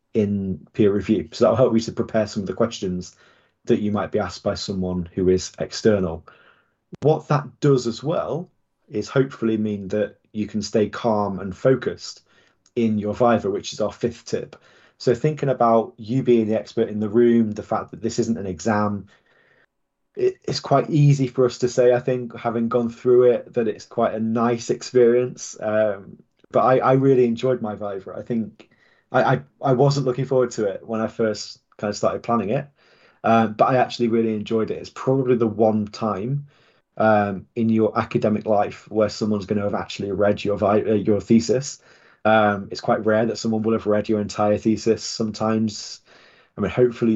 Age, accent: 20-39, British